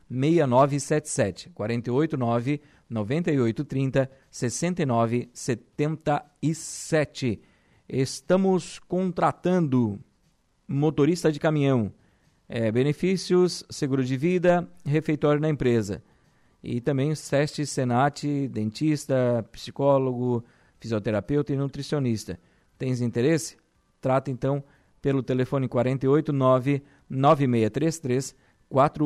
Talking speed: 85 wpm